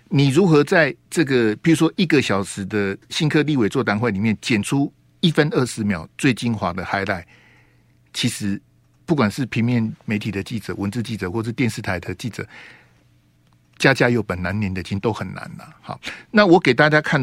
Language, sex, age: Chinese, male, 60-79